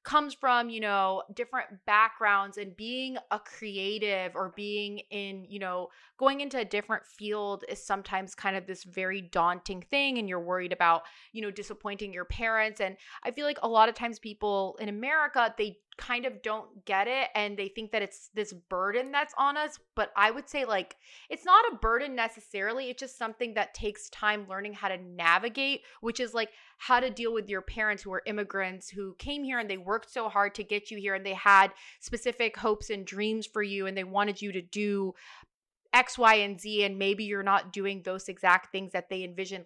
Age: 20-39